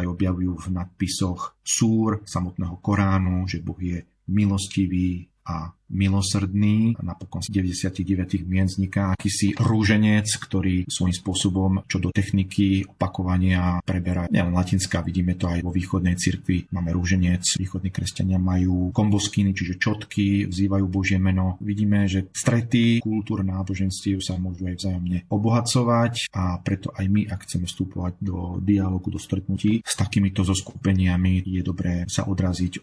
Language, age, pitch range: Slovak, 40-59, 95-105 Hz